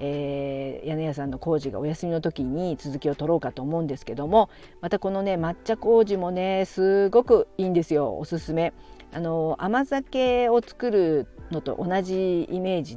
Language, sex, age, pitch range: Japanese, female, 50-69, 145-190 Hz